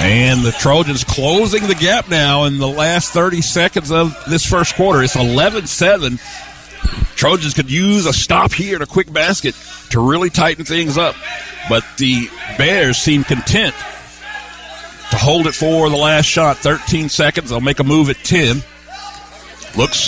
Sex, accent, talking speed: male, American, 160 wpm